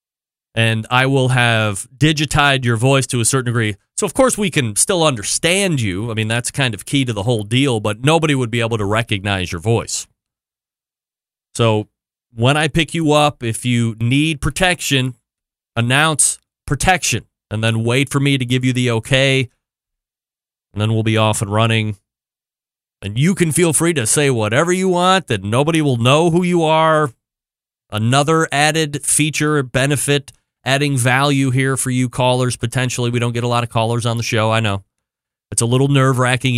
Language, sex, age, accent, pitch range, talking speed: English, male, 30-49, American, 115-145 Hz, 180 wpm